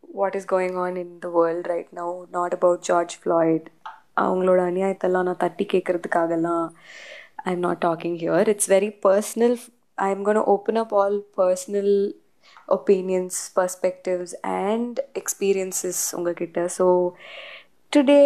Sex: female